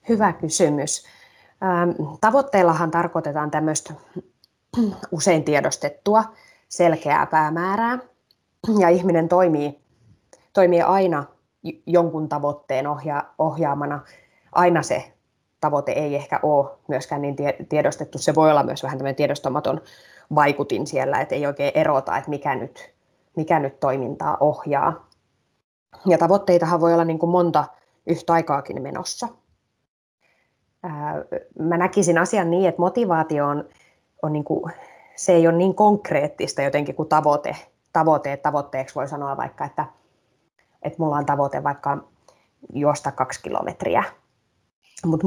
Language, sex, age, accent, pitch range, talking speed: Finnish, female, 20-39, native, 145-175 Hz, 120 wpm